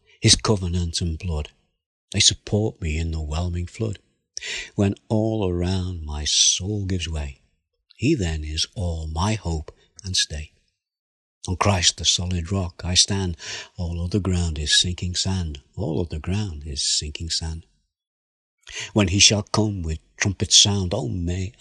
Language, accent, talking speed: English, British, 150 wpm